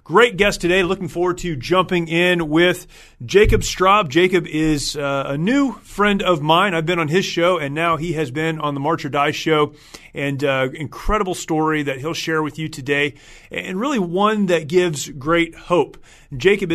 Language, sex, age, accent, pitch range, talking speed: English, male, 30-49, American, 150-180 Hz, 185 wpm